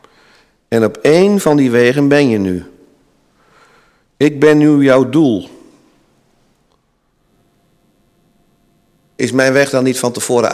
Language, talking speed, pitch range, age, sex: Dutch, 120 wpm, 105-145 Hz, 50-69, male